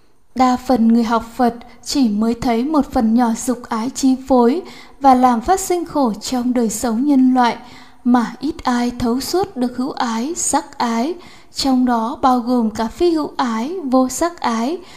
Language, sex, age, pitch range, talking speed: Vietnamese, female, 20-39, 240-280 Hz, 185 wpm